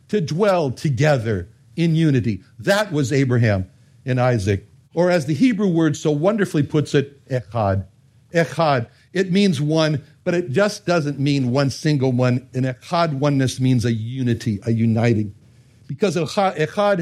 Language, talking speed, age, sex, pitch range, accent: English, 150 wpm, 60-79, male, 125-175 Hz, American